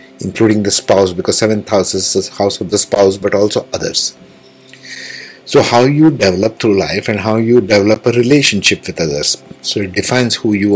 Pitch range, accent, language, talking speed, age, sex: 100-120 Hz, Indian, English, 190 wpm, 50-69, male